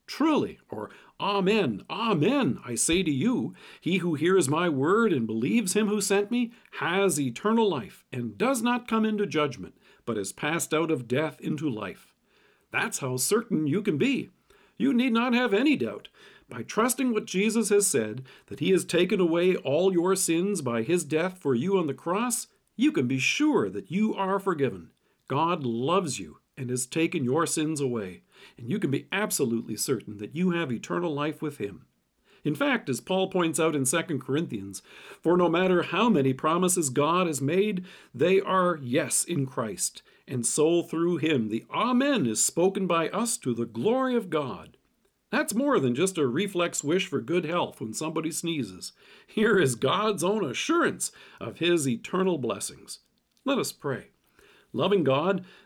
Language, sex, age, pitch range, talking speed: English, male, 50-69, 140-205 Hz, 180 wpm